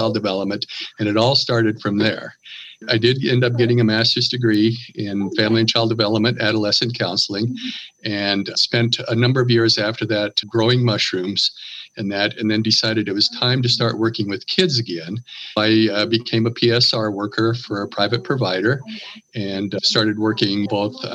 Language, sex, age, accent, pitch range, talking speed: English, male, 50-69, American, 105-120 Hz, 175 wpm